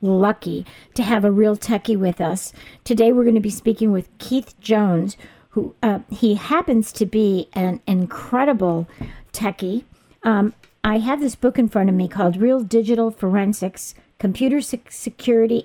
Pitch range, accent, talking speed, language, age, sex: 205-250 Hz, American, 155 wpm, English, 50-69, female